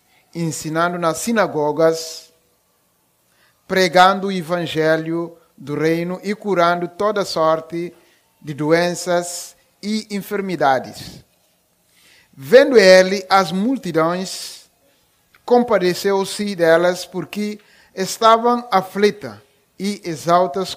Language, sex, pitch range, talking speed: Portuguese, male, 145-185 Hz, 80 wpm